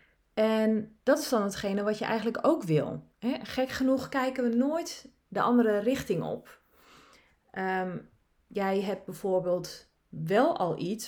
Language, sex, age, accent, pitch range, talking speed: Dutch, female, 30-49, Dutch, 180-240 Hz, 135 wpm